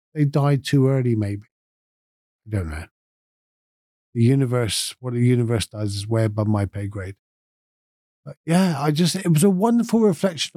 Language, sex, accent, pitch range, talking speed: English, male, British, 110-155 Hz, 165 wpm